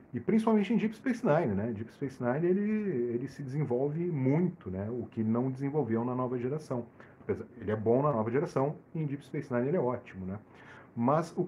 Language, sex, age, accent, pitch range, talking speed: Portuguese, male, 40-59, Brazilian, 120-155 Hz, 210 wpm